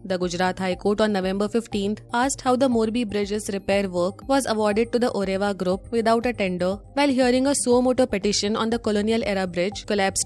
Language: English